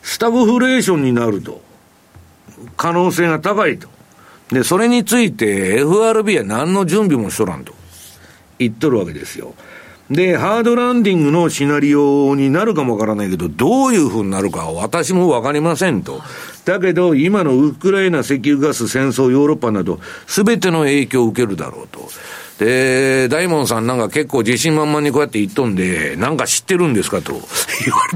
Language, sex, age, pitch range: Japanese, male, 60-79, 110-185 Hz